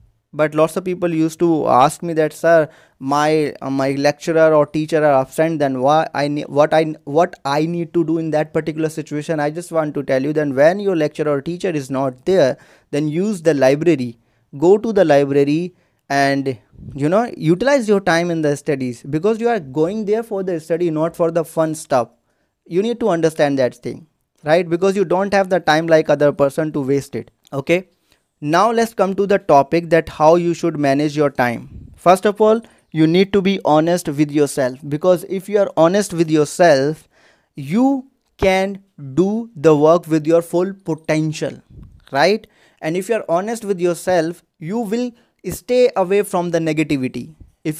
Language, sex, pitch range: English, male, 150-195 Hz